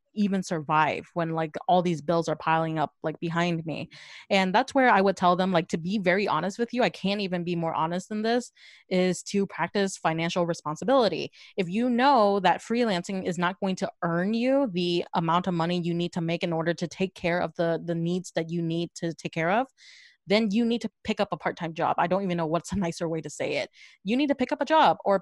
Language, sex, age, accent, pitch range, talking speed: English, female, 20-39, American, 170-205 Hz, 245 wpm